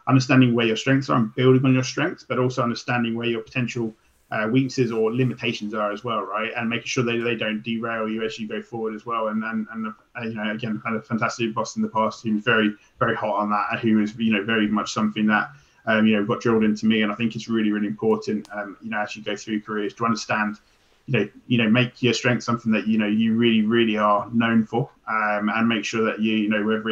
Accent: British